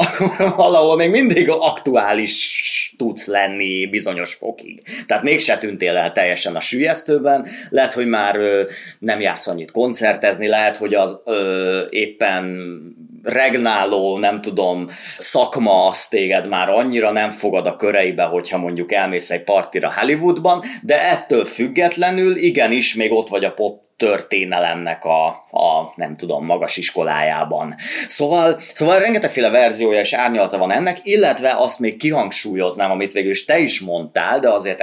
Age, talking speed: 30-49, 140 wpm